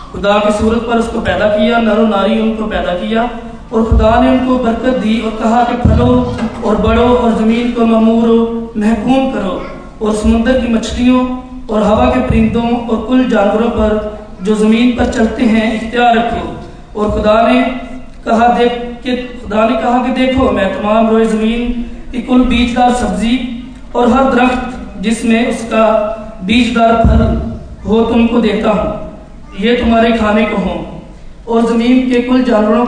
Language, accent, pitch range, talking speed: Hindi, native, 210-235 Hz, 160 wpm